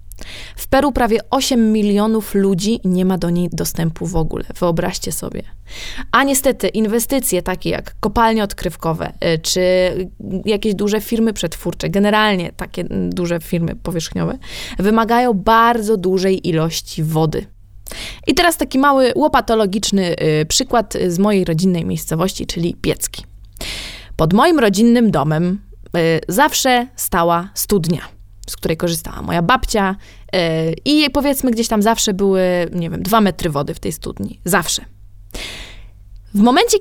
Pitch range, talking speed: 165-235 Hz, 130 wpm